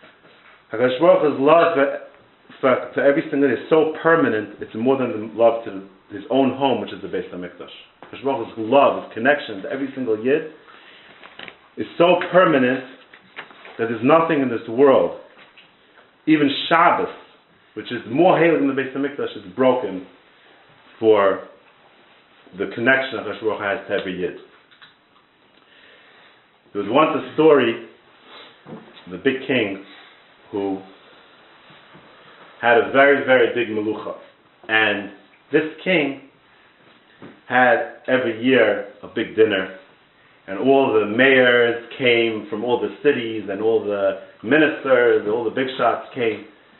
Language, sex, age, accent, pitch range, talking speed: English, male, 40-59, American, 115-150 Hz, 130 wpm